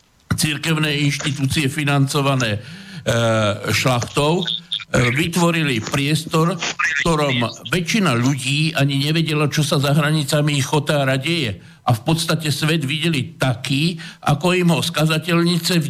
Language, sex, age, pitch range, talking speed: Slovak, male, 60-79, 140-165 Hz, 115 wpm